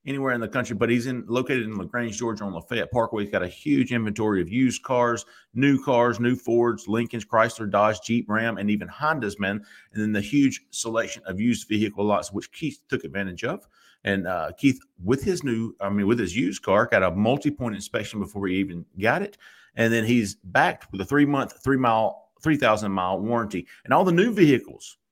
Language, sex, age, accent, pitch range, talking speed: English, male, 40-59, American, 105-135 Hz, 205 wpm